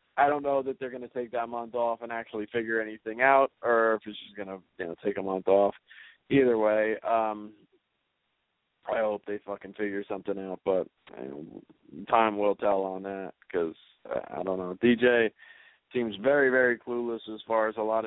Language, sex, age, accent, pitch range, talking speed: English, male, 20-39, American, 105-125 Hz, 195 wpm